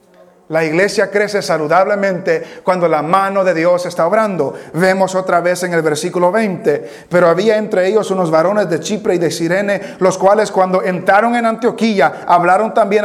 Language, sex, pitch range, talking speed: English, male, 190-235 Hz, 170 wpm